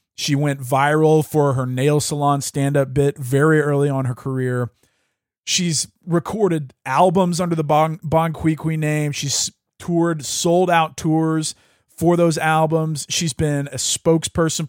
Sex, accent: male, American